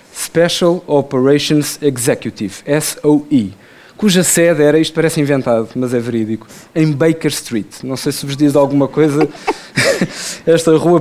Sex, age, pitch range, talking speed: male, 20-39, 130-170 Hz, 135 wpm